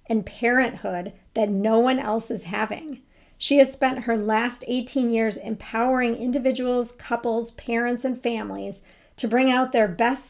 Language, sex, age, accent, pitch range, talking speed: English, female, 40-59, American, 200-245 Hz, 150 wpm